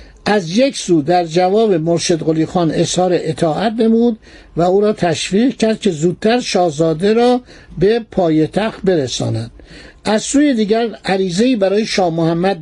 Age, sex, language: 60-79, male, Persian